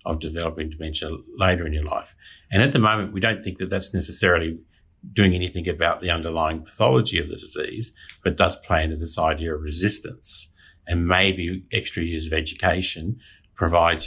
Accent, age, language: Australian, 50-69, English